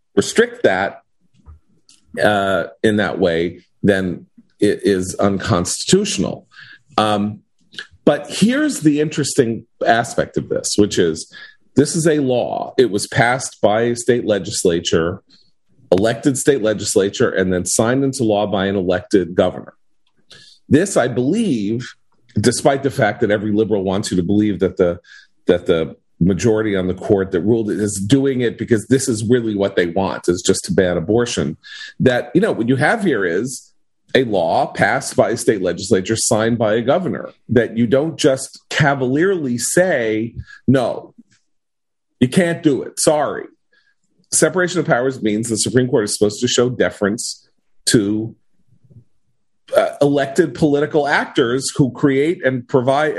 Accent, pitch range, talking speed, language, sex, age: American, 105-140 Hz, 150 wpm, English, male, 40-59